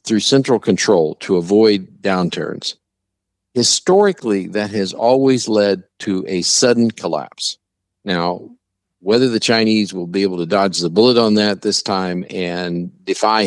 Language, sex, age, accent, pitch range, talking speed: English, male, 50-69, American, 90-110 Hz, 145 wpm